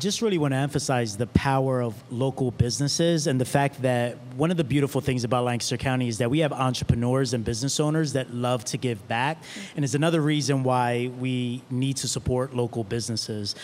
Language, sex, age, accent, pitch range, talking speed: English, male, 30-49, American, 120-140 Hz, 200 wpm